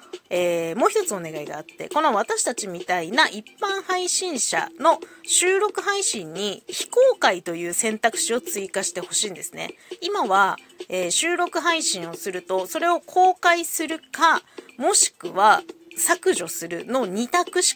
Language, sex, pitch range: Japanese, female, 215-360 Hz